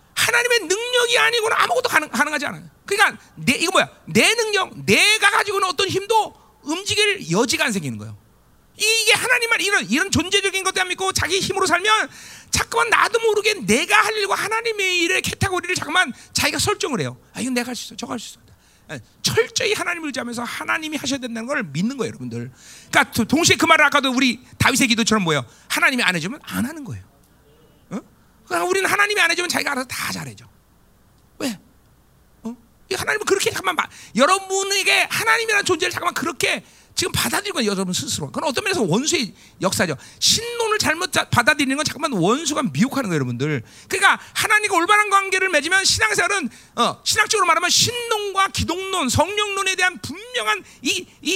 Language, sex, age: Korean, male, 40-59